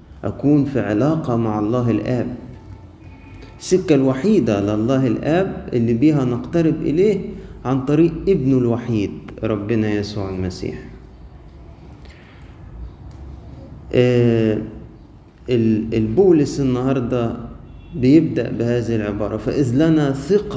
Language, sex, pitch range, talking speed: Arabic, male, 110-150 Hz, 90 wpm